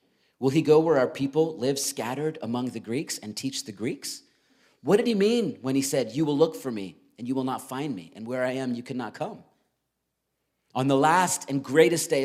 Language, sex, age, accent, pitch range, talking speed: English, male, 40-59, American, 125-160 Hz, 225 wpm